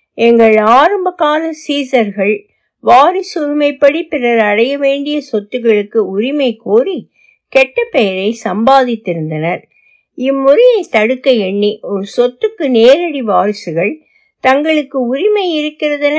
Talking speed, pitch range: 80 wpm, 200-310 Hz